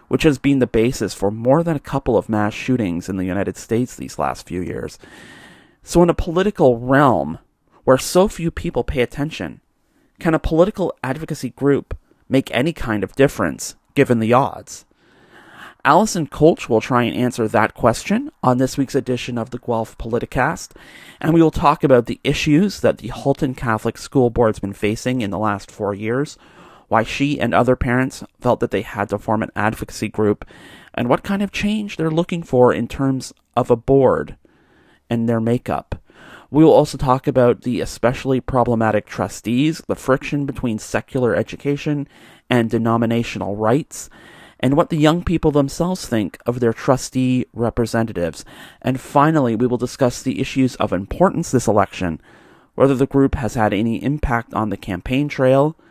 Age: 30-49